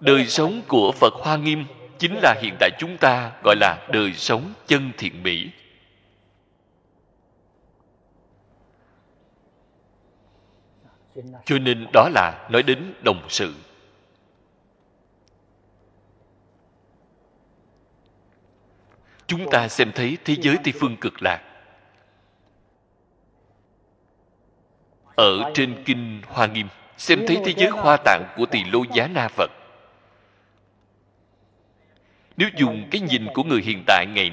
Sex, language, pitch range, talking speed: male, Vietnamese, 100-130 Hz, 110 wpm